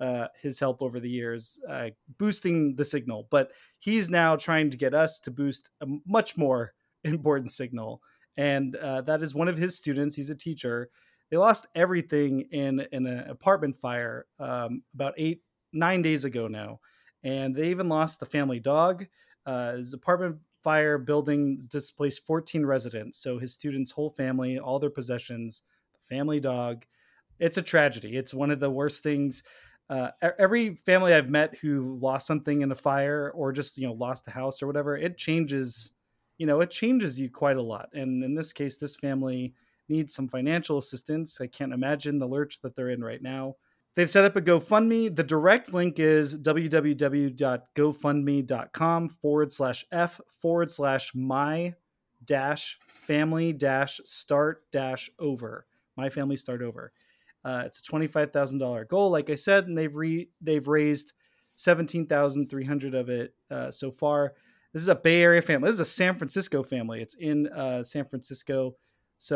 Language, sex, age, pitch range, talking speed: English, male, 30-49, 130-160 Hz, 175 wpm